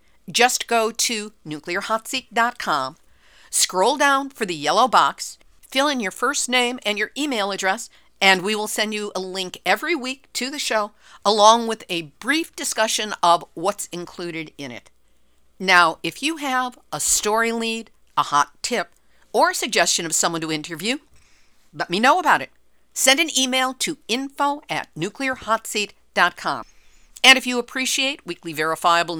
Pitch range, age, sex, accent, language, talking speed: 175-255 Hz, 50-69, female, American, English, 155 wpm